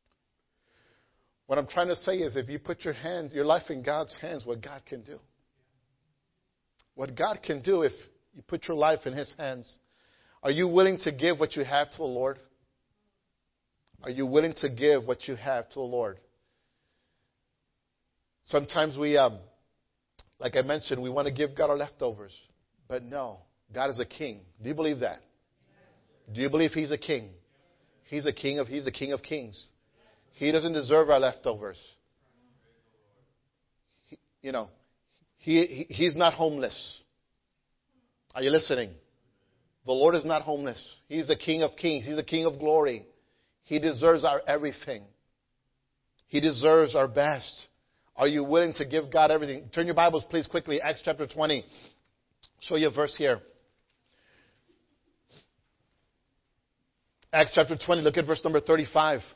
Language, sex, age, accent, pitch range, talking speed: English, male, 50-69, American, 130-160 Hz, 160 wpm